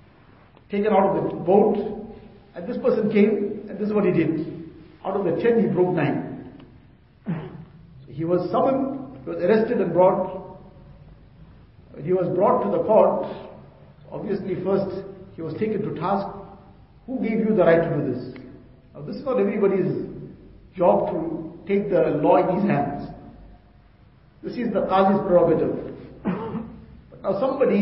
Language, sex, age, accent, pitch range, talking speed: English, male, 50-69, Indian, 165-205 Hz, 160 wpm